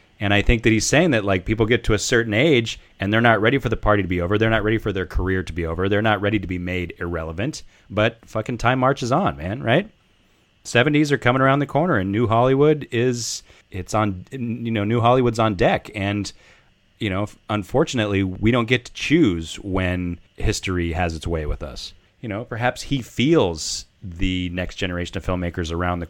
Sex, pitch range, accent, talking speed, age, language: male, 85-110 Hz, American, 215 wpm, 30-49, English